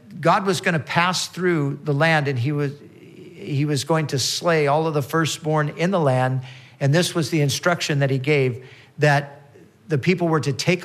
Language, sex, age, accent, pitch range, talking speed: English, male, 50-69, American, 125-160 Hz, 205 wpm